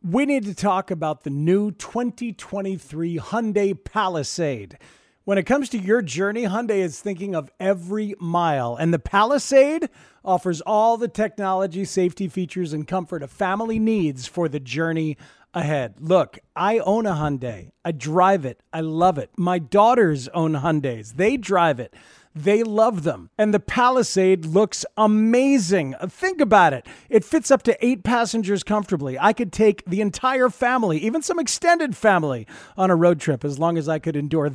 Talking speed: 165 wpm